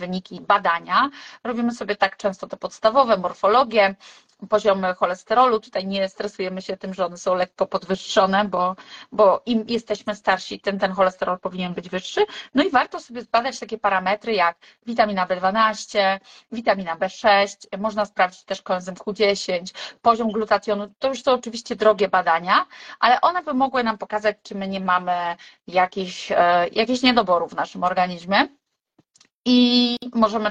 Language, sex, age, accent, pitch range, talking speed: Polish, female, 30-49, native, 190-230 Hz, 150 wpm